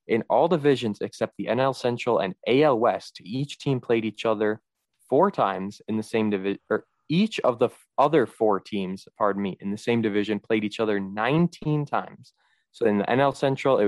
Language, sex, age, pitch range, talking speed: English, male, 20-39, 105-130 Hz, 195 wpm